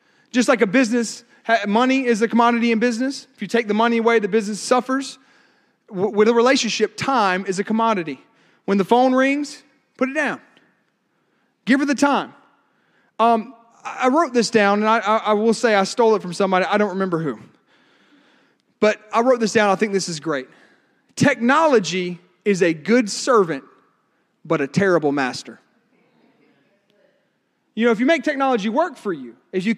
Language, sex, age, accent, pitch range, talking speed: English, male, 30-49, American, 200-250 Hz, 175 wpm